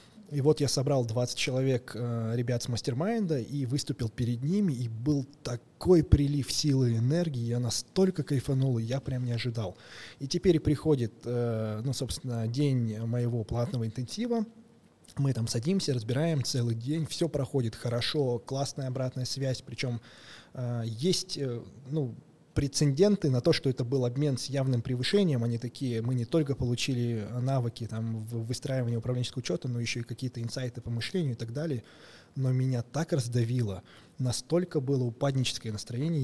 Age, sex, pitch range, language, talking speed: 20-39, male, 120-145 Hz, Russian, 150 wpm